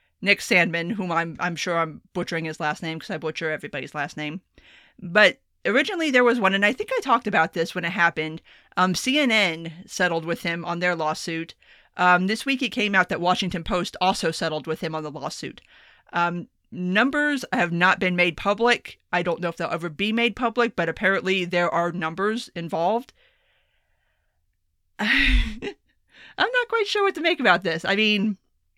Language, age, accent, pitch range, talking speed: English, 30-49, American, 170-230 Hz, 190 wpm